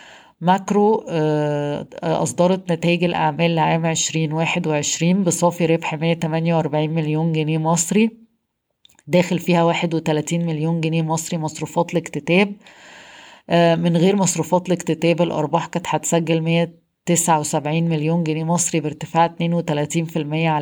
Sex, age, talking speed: female, 20-39, 95 wpm